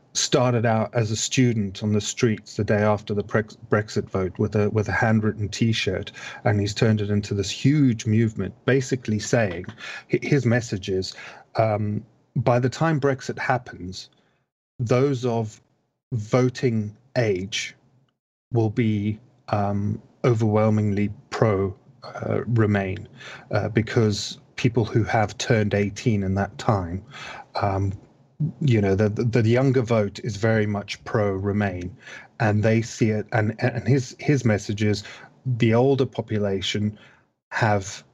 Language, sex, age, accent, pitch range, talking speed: English, male, 30-49, British, 105-130 Hz, 135 wpm